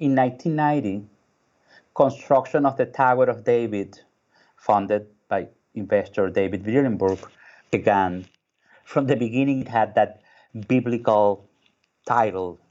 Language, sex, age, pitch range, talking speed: English, male, 30-49, 100-125 Hz, 105 wpm